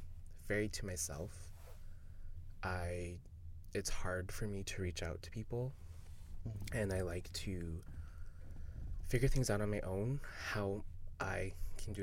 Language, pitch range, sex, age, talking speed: English, 85-95 Hz, male, 20-39, 135 wpm